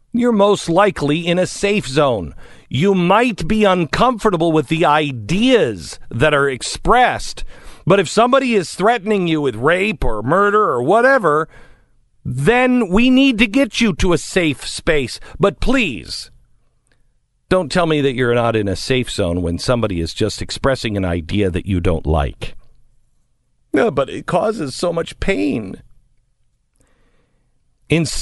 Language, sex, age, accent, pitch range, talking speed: English, male, 50-69, American, 140-215 Hz, 150 wpm